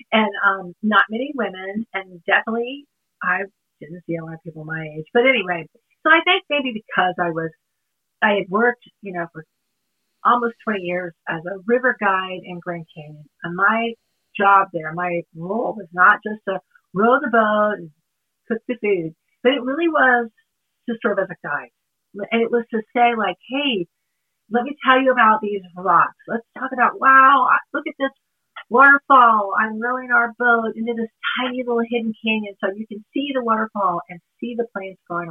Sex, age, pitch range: female, 40-59, 175-240 Hz